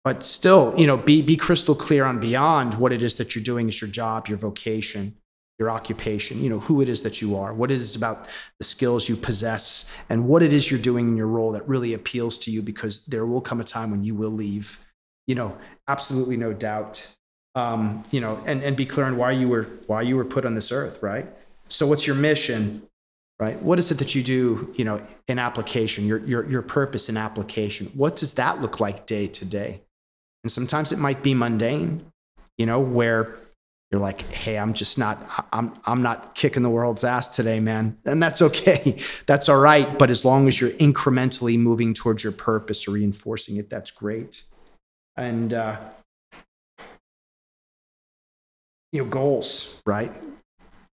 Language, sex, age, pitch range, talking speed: English, male, 30-49, 110-130 Hz, 195 wpm